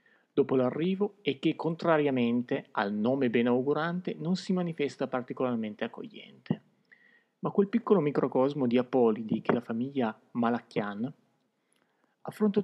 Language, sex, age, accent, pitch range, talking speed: Italian, male, 40-59, native, 125-170 Hz, 115 wpm